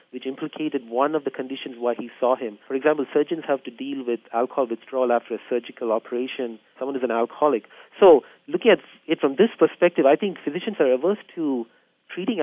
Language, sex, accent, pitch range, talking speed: English, male, Indian, 125-155 Hz, 200 wpm